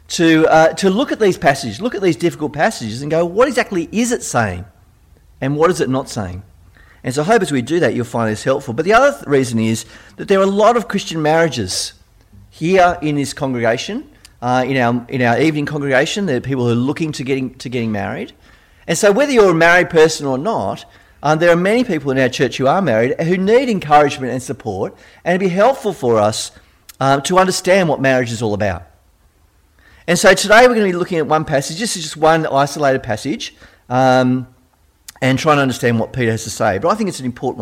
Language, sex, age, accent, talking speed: English, male, 40-59, Australian, 230 wpm